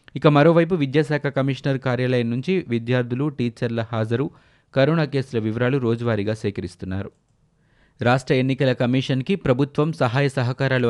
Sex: male